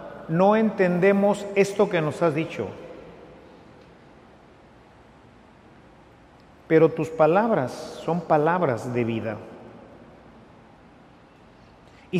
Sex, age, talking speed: male, 40-59, 75 wpm